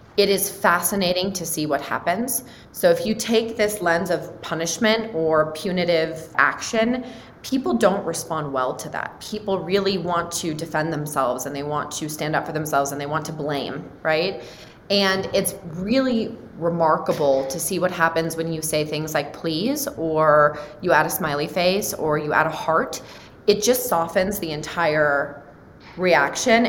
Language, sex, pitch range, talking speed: English, female, 155-205 Hz, 170 wpm